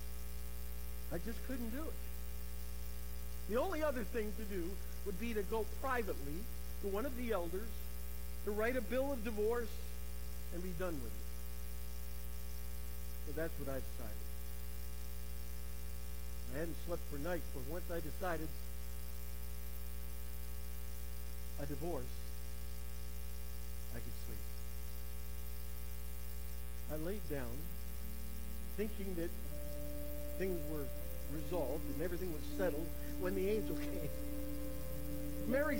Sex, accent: male, American